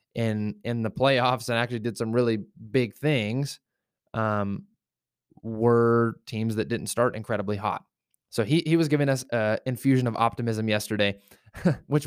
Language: English